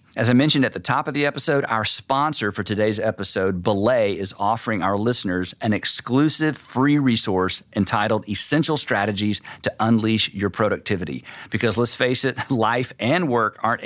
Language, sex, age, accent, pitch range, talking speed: English, male, 50-69, American, 95-125 Hz, 165 wpm